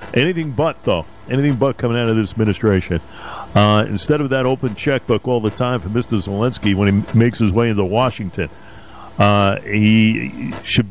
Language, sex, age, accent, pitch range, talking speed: English, male, 50-69, American, 105-130 Hz, 175 wpm